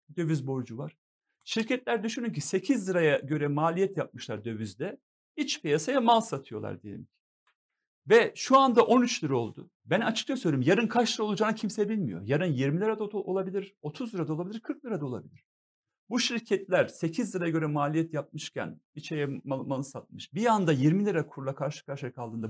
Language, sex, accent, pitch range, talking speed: Turkish, male, native, 140-215 Hz, 170 wpm